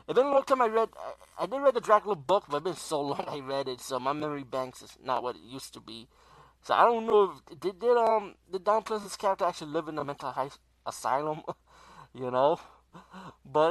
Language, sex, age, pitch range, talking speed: English, male, 20-39, 130-185 Hz, 235 wpm